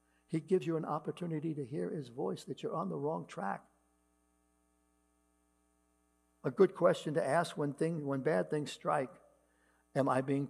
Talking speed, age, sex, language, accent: 165 wpm, 60-79, male, English, American